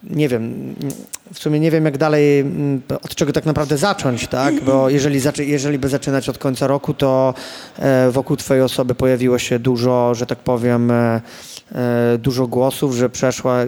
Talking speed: 160 wpm